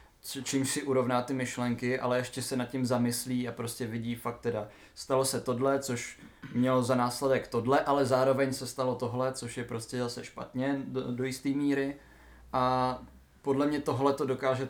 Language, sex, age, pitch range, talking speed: Czech, male, 20-39, 115-130 Hz, 180 wpm